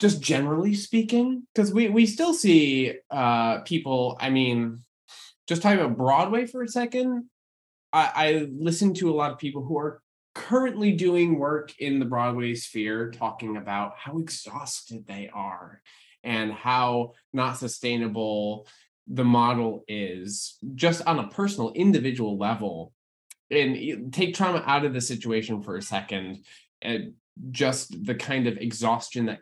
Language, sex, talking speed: English, male, 145 wpm